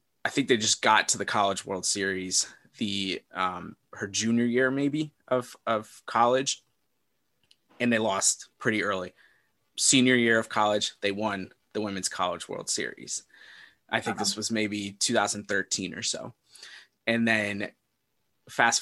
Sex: male